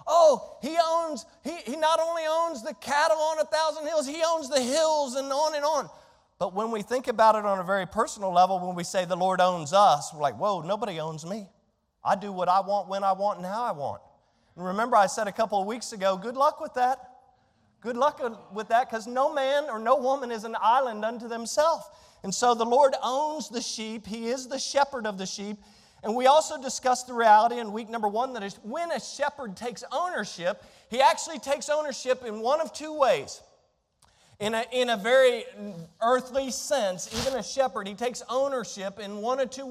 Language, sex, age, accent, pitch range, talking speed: English, male, 40-59, American, 210-275 Hz, 215 wpm